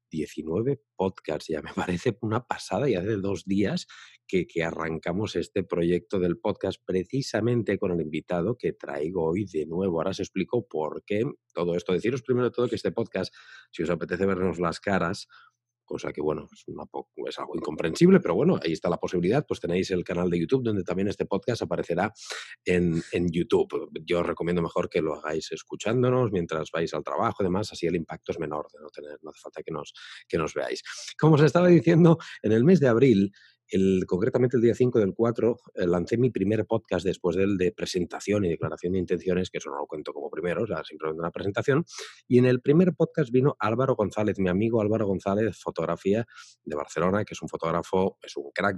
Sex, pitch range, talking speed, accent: male, 90-125 Hz, 210 wpm, Spanish